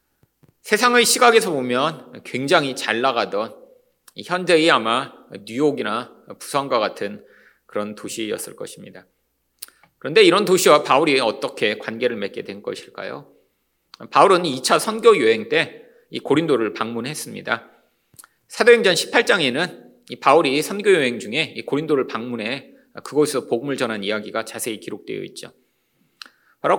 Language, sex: Korean, male